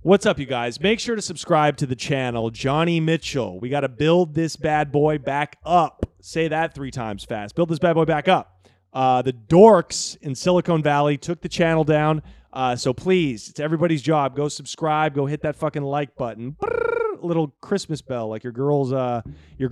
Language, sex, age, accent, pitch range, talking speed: English, male, 30-49, American, 125-170 Hz, 200 wpm